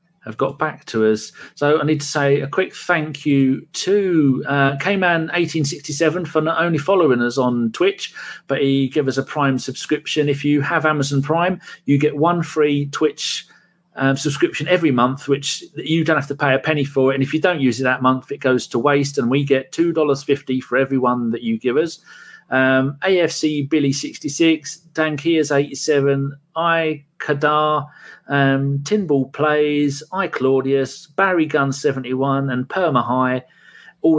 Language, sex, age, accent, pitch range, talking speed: English, male, 40-59, British, 135-160 Hz, 175 wpm